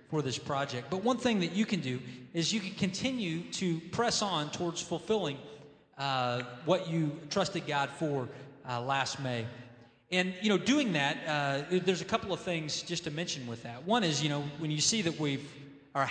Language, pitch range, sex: English, 140-180 Hz, male